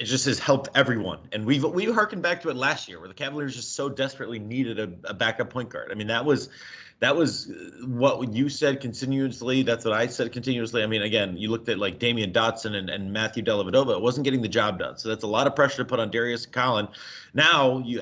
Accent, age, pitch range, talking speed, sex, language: American, 30-49, 105-125 Hz, 250 wpm, male, English